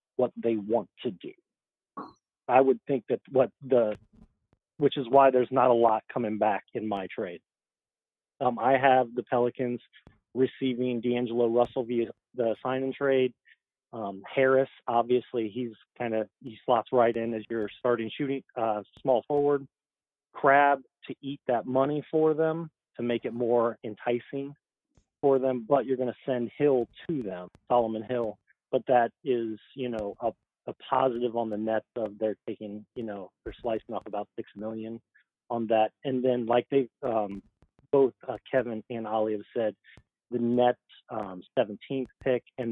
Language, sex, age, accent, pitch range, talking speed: English, male, 40-59, American, 115-130 Hz, 165 wpm